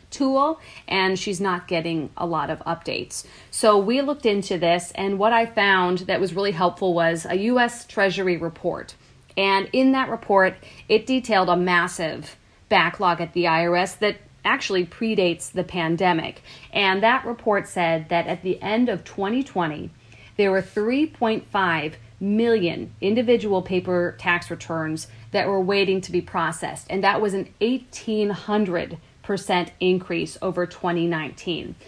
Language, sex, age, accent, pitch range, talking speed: English, female, 40-59, American, 170-205 Hz, 145 wpm